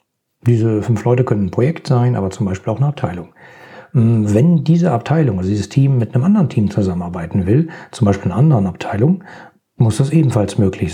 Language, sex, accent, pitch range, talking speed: German, male, German, 105-140 Hz, 185 wpm